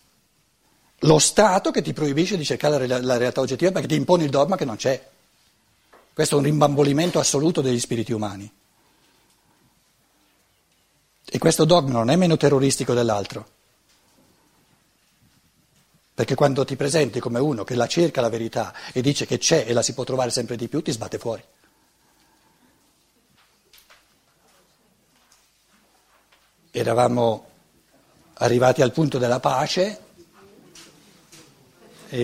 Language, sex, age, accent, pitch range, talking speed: Italian, male, 60-79, native, 120-185 Hz, 125 wpm